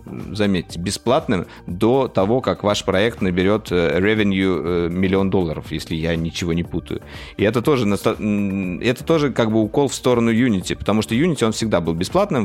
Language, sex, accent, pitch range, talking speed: Russian, male, native, 90-115 Hz, 160 wpm